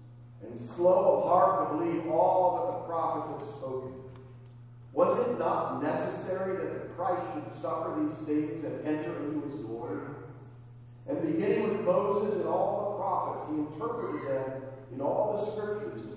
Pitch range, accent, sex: 120-175 Hz, American, male